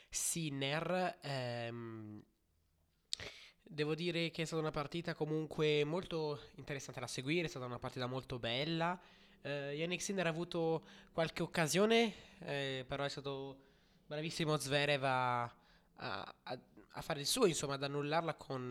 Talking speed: 140 wpm